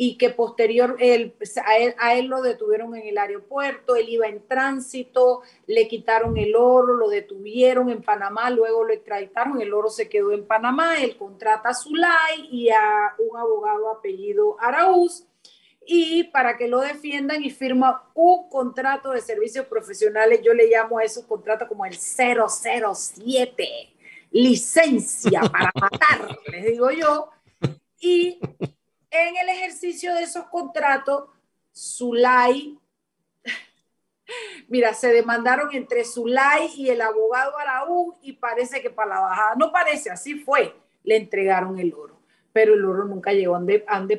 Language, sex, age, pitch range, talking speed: Spanish, female, 40-59, 225-305 Hz, 150 wpm